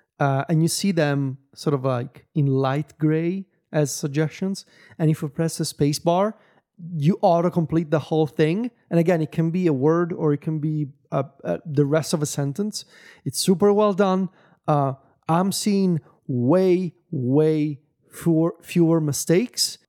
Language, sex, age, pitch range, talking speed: English, male, 30-49, 135-175 Hz, 155 wpm